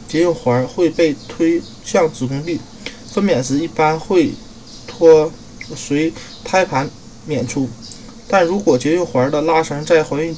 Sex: male